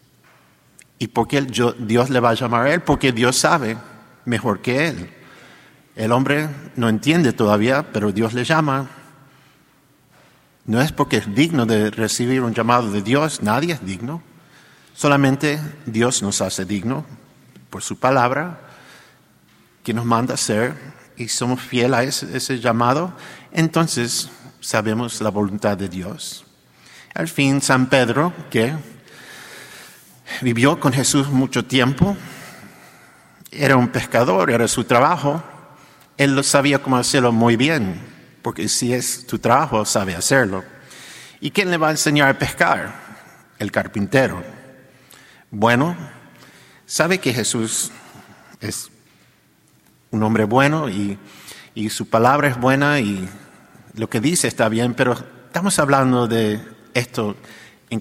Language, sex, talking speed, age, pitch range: English, male, 135 wpm, 50-69, 115-145 Hz